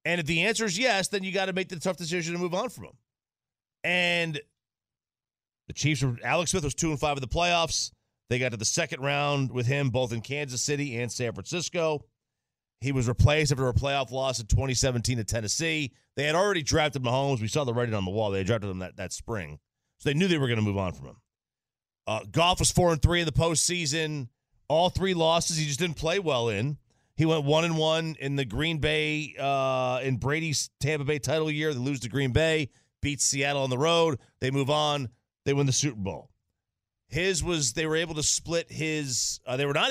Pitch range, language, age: 115-155 Hz, English, 30-49